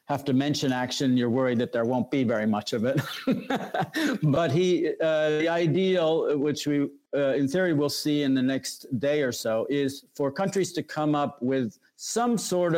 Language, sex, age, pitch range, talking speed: English, male, 50-69, 125-150 Hz, 195 wpm